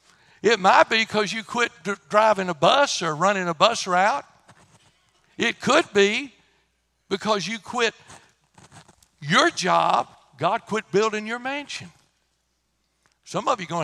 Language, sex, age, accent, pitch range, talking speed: English, male, 60-79, American, 150-205 Hz, 140 wpm